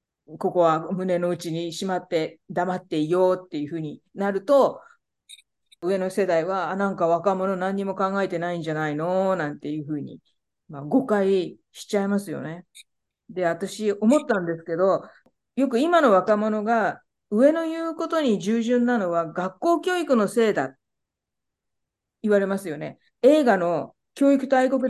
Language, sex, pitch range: Japanese, female, 185-270 Hz